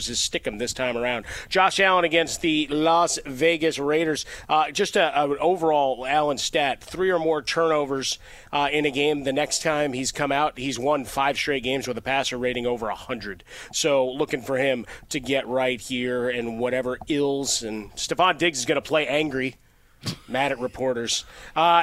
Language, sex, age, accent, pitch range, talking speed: English, male, 30-49, American, 125-155 Hz, 185 wpm